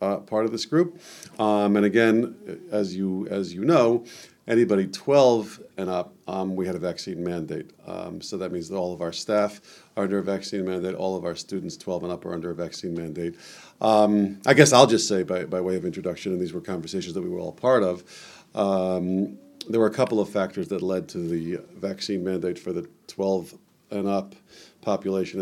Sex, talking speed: male, 210 wpm